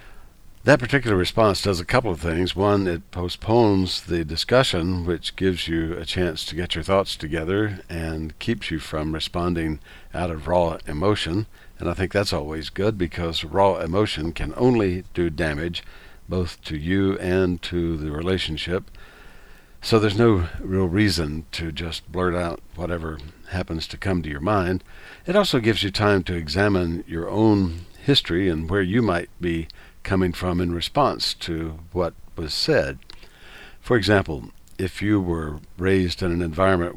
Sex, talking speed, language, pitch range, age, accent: male, 160 wpm, English, 85-100 Hz, 60-79, American